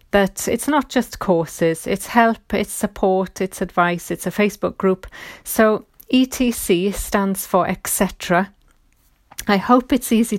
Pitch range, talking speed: 190-240 Hz, 140 wpm